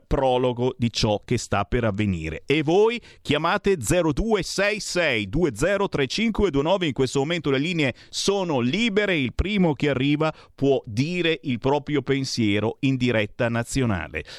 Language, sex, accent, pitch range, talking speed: Italian, male, native, 120-165 Hz, 130 wpm